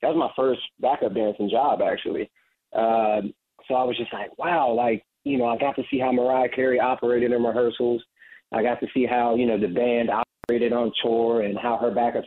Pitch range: 110-120 Hz